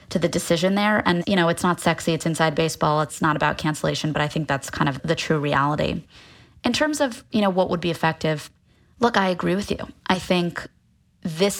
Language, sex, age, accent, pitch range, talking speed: English, female, 20-39, American, 165-205 Hz, 220 wpm